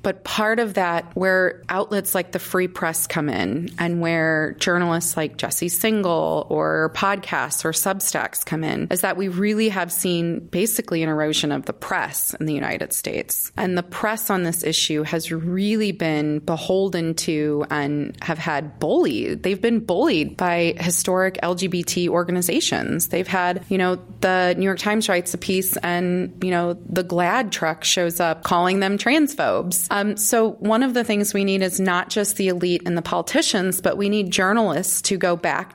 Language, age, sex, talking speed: English, 20-39, female, 180 wpm